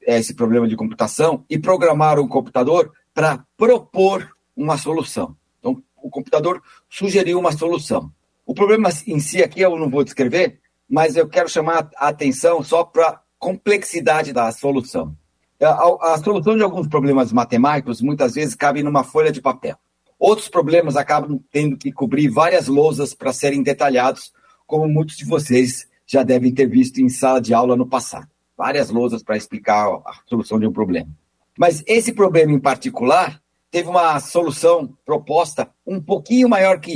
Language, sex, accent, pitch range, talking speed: Portuguese, male, Brazilian, 130-180 Hz, 160 wpm